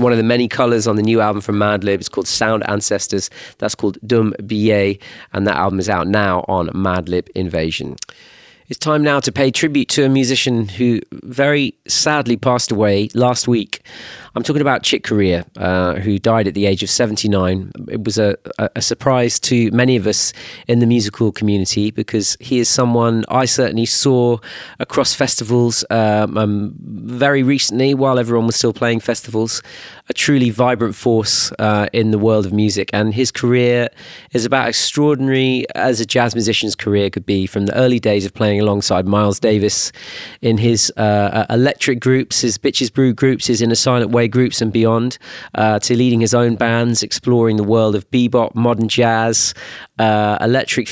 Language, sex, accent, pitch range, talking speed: French, male, British, 105-125 Hz, 180 wpm